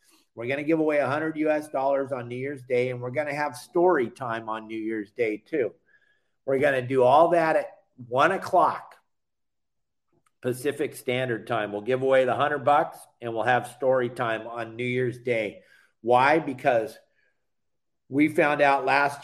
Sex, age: male, 50-69